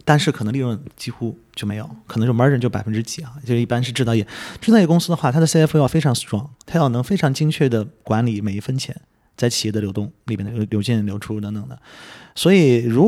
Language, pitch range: Chinese, 115-150 Hz